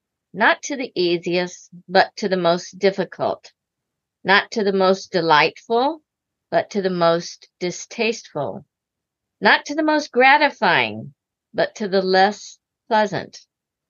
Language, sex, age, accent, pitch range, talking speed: English, female, 50-69, American, 170-230 Hz, 125 wpm